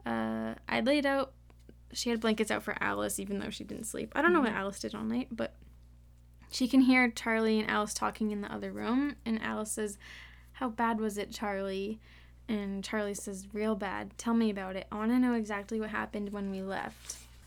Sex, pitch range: female, 205-240 Hz